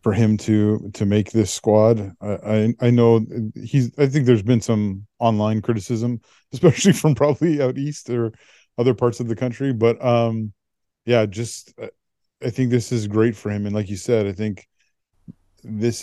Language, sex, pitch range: English, male, 105-120 Hz